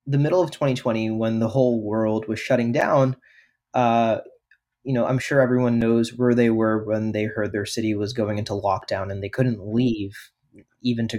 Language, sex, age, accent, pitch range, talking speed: English, male, 20-39, American, 110-130 Hz, 195 wpm